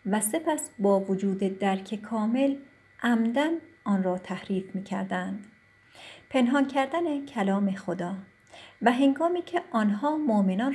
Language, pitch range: Persian, 190-245 Hz